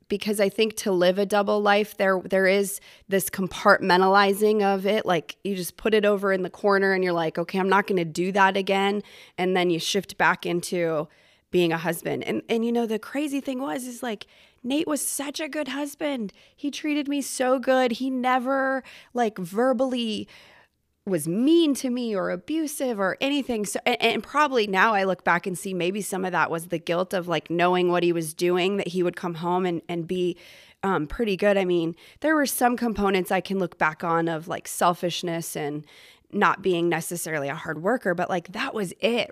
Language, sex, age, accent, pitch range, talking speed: English, female, 20-39, American, 180-230 Hz, 210 wpm